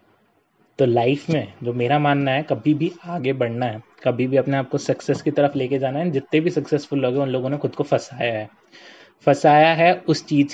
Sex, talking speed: male, 220 wpm